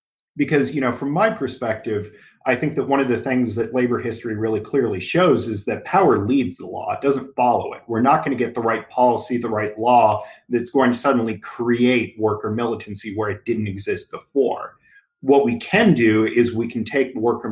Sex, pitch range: male, 105-130 Hz